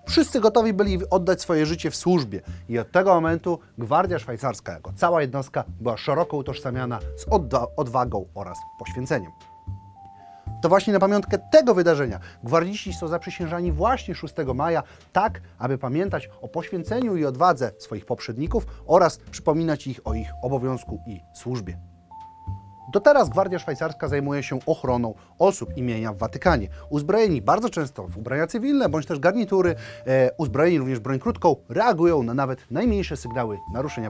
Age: 30-49